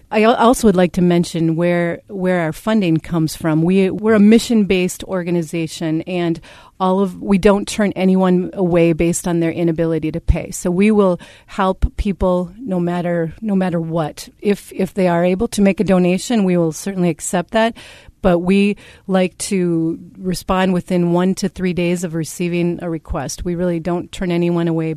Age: 30-49